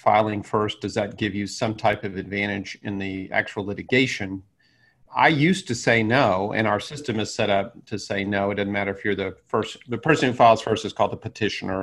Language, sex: English, male